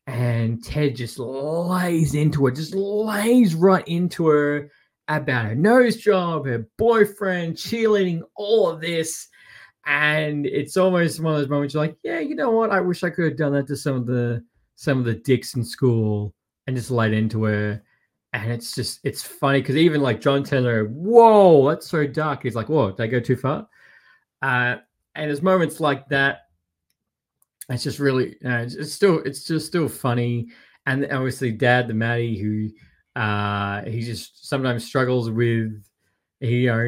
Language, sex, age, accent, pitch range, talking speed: English, male, 20-39, Australian, 120-150 Hz, 175 wpm